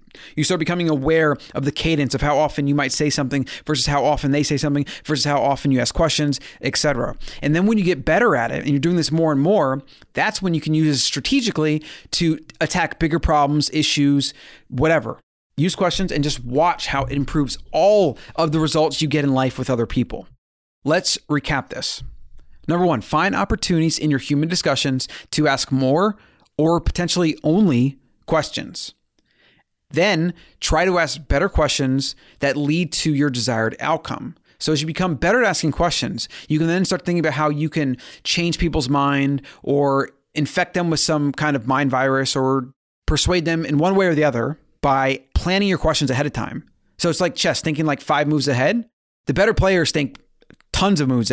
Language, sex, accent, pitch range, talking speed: English, male, American, 140-165 Hz, 195 wpm